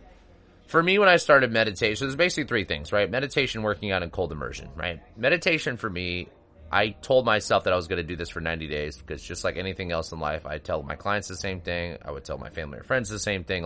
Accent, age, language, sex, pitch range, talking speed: American, 30-49, English, male, 85-110 Hz, 255 wpm